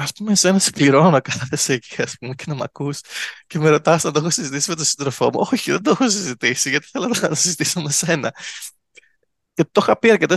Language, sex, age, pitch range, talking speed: Greek, male, 20-39, 125-170 Hz, 220 wpm